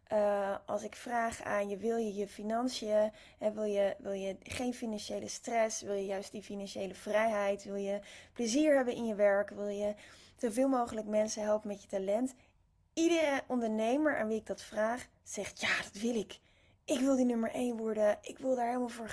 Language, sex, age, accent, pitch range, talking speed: Dutch, female, 20-39, Dutch, 200-245 Hz, 200 wpm